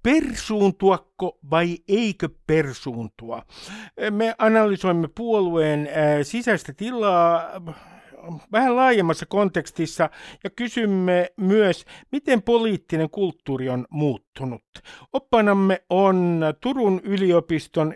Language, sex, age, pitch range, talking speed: Finnish, male, 60-79, 155-210 Hz, 80 wpm